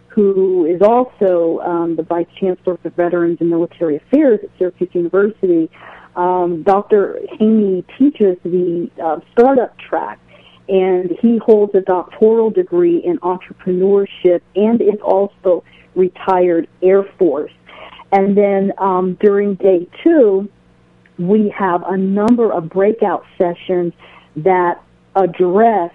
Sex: female